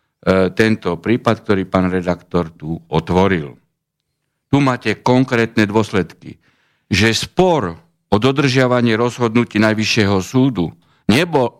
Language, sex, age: Slovak, male, 60-79